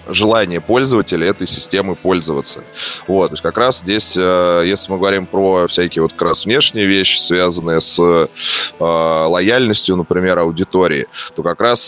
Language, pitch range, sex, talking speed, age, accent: Russian, 85-100 Hz, male, 145 wpm, 20-39, native